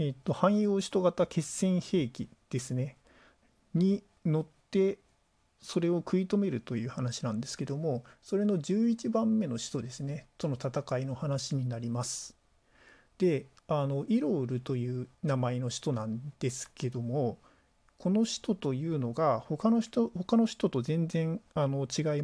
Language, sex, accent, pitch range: Japanese, male, native, 130-195 Hz